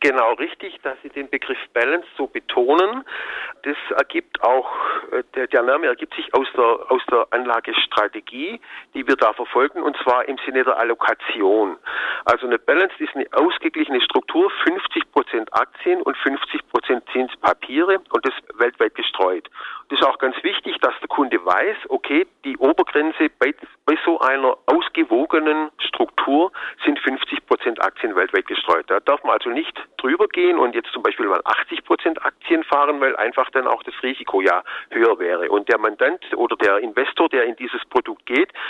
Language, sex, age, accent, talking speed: German, male, 50-69, German, 165 wpm